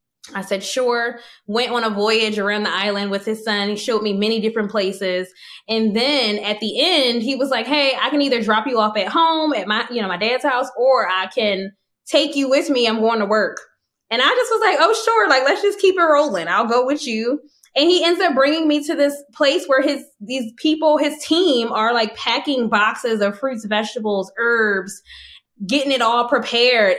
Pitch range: 215-285 Hz